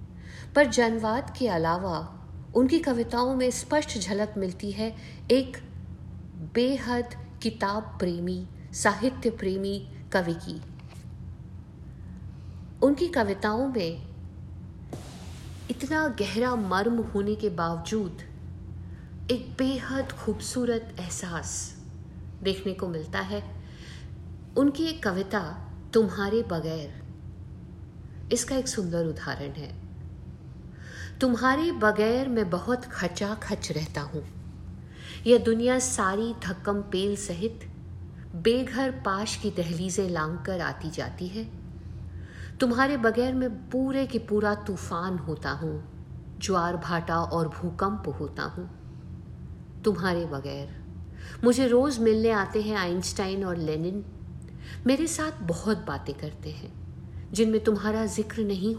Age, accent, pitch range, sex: 50-69, native, 155-235 Hz, female